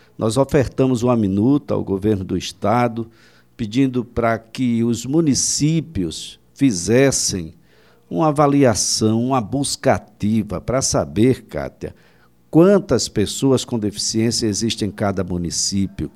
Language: Portuguese